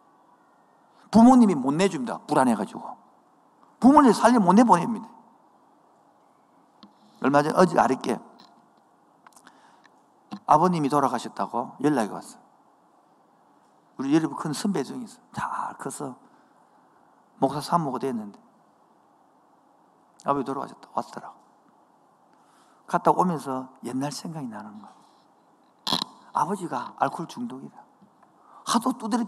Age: 50-69